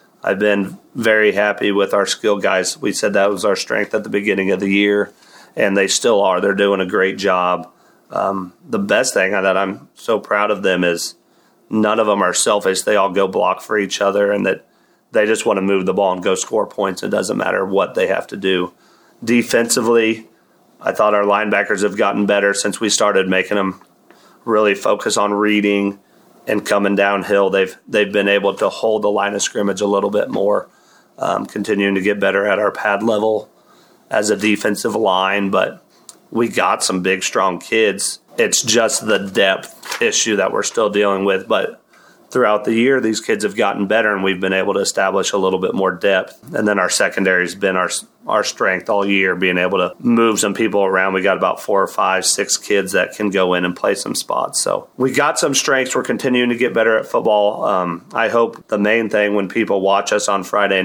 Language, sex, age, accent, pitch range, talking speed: English, male, 30-49, American, 95-105 Hz, 210 wpm